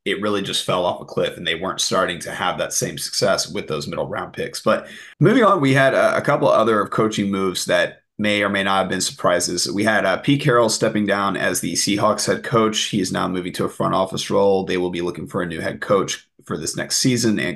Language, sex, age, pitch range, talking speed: English, male, 30-49, 90-110 Hz, 255 wpm